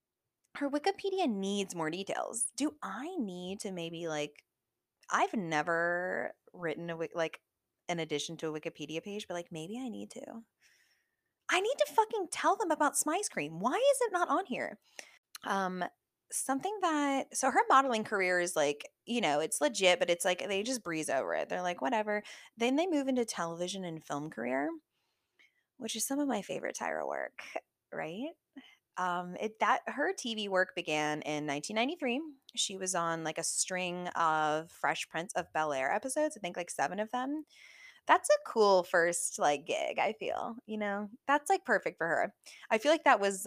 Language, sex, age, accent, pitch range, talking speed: English, female, 20-39, American, 175-280 Hz, 180 wpm